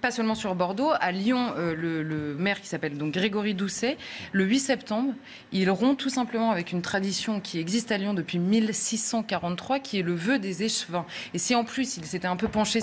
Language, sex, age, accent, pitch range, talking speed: French, female, 20-39, French, 175-235 Hz, 210 wpm